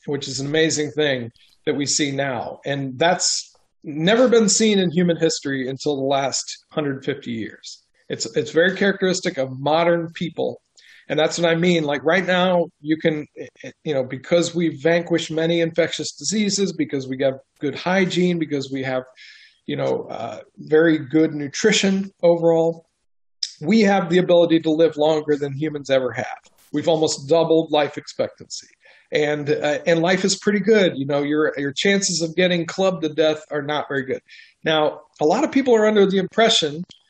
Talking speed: 175 wpm